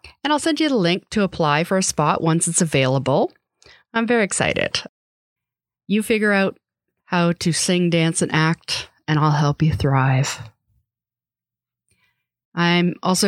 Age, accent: 40-59, American